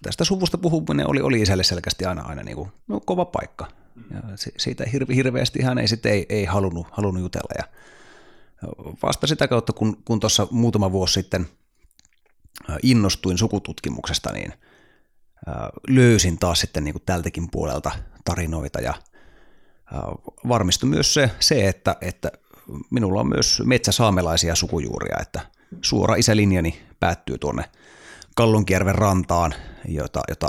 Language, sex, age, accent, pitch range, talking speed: Finnish, male, 30-49, native, 85-105 Hz, 110 wpm